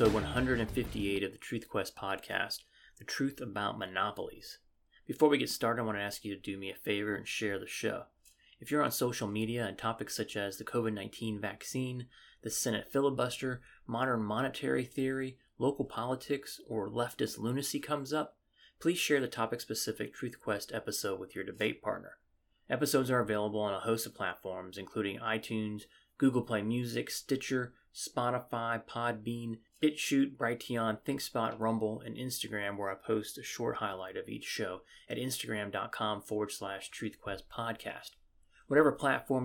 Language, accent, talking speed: English, American, 155 wpm